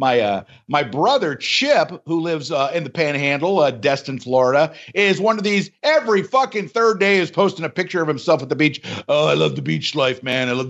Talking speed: 225 wpm